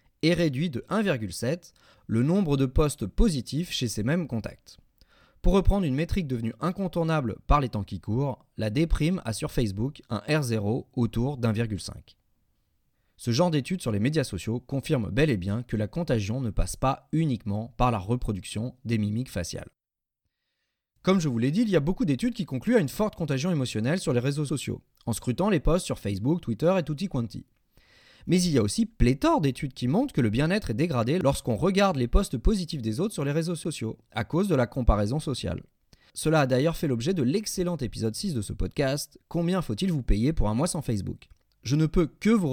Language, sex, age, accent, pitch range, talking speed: French, male, 30-49, French, 110-160 Hz, 205 wpm